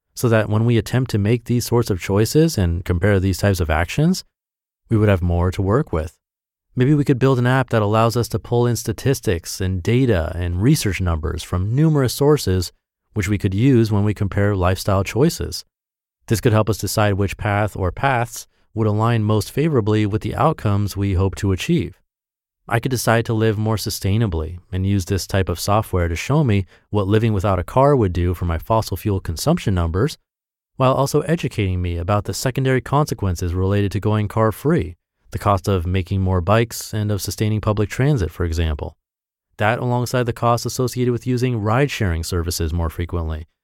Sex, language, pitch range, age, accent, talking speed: male, English, 95-120 Hz, 30-49, American, 190 wpm